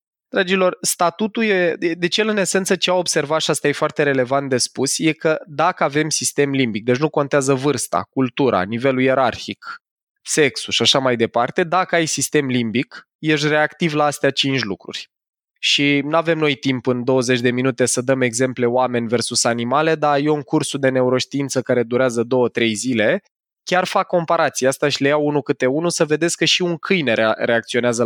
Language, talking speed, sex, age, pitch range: Romanian, 190 wpm, male, 20-39, 125-155 Hz